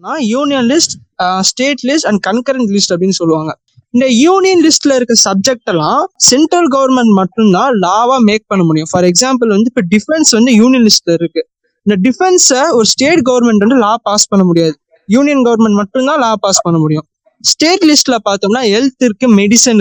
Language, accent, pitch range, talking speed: Tamil, native, 200-285 Hz, 170 wpm